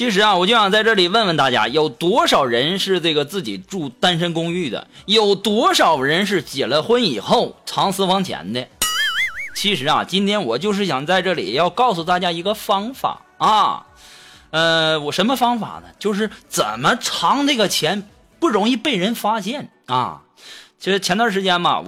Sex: male